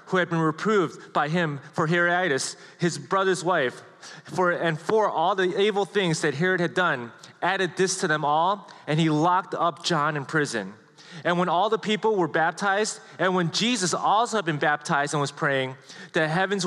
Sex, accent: male, American